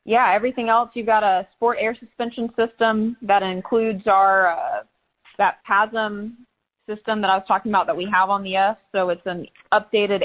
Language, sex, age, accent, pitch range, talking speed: English, female, 20-39, American, 190-215 Hz, 185 wpm